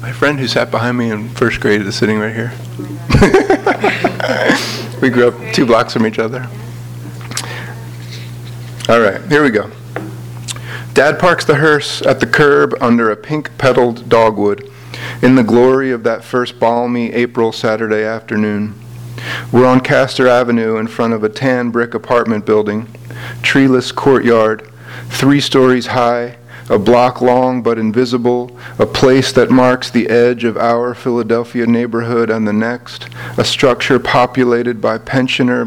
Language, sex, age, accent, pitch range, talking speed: English, male, 40-59, American, 110-125 Hz, 145 wpm